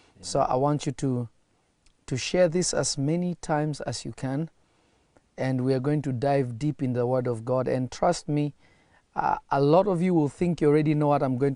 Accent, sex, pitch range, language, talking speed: South African, male, 125-145 Hz, English, 220 wpm